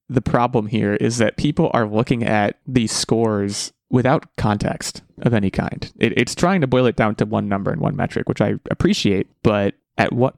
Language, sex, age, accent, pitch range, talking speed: English, male, 20-39, American, 105-130 Hz, 195 wpm